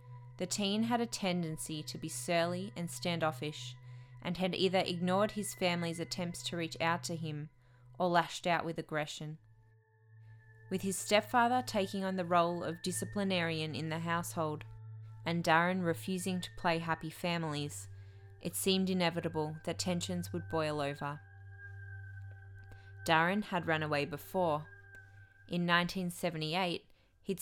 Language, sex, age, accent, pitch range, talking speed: English, female, 20-39, Australian, 105-175 Hz, 135 wpm